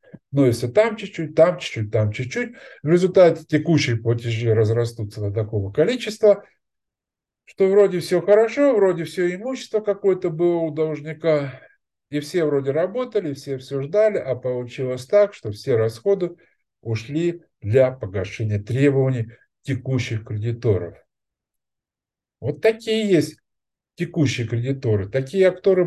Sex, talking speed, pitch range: male, 125 wpm, 110-175 Hz